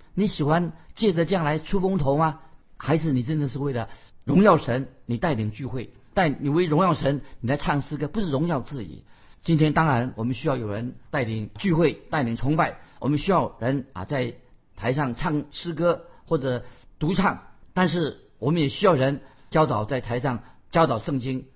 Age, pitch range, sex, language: 50-69, 120-165 Hz, male, Chinese